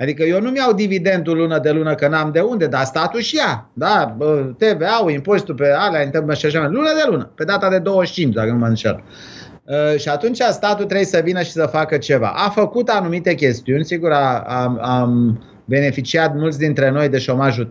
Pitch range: 130-165 Hz